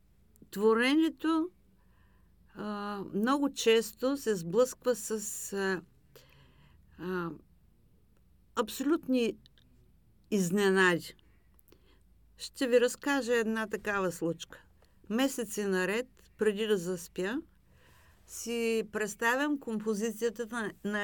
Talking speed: 75 wpm